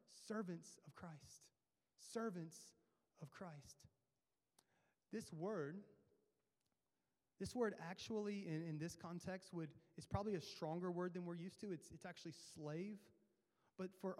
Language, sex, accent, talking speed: English, male, American, 130 wpm